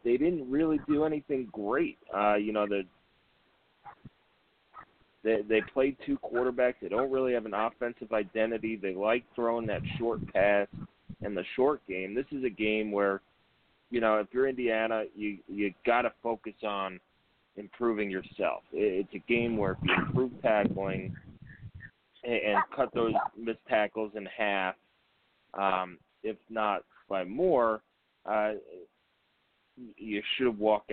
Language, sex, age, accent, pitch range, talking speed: English, male, 30-49, American, 100-115 Hz, 145 wpm